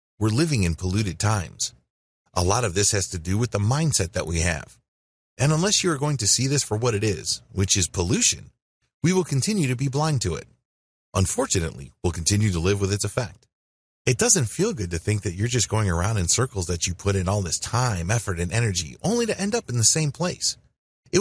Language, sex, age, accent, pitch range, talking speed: English, male, 30-49, American, 95-140 Hz, 225 wpm